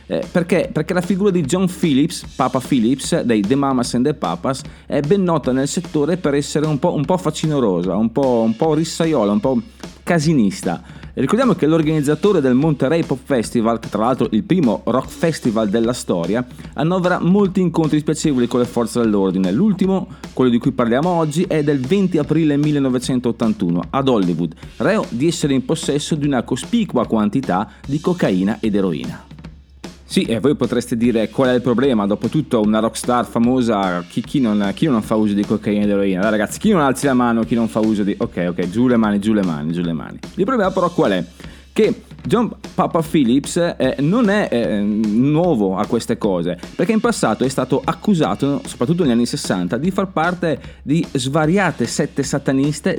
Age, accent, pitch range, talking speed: 30-49, native, 110-165 Hz, 190 wpm